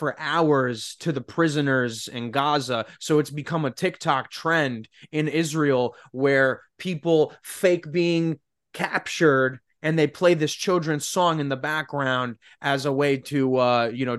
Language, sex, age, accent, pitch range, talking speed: English, male, 20-39, American, 150-240 Hz, 150 wpm